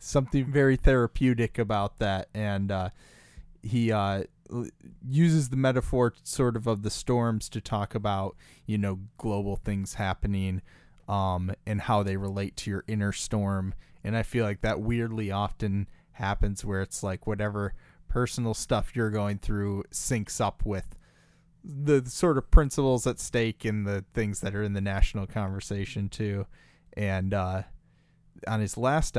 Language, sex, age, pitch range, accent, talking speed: English, male, 20-39, 100-120 Hz, American, 155 wpm